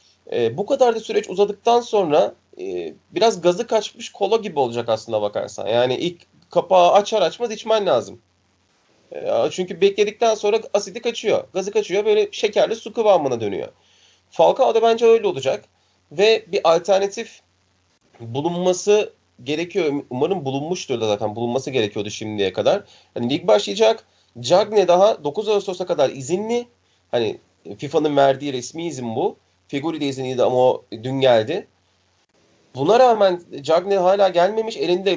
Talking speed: 140 wpm